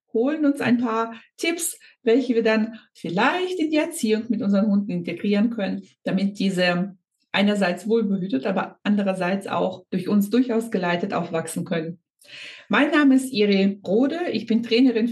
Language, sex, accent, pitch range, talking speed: German, female, German, 200-265 Hz, 150 wpm